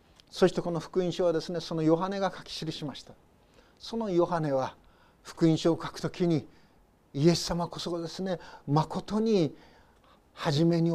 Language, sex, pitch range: Japanese, male, 155-190 Hz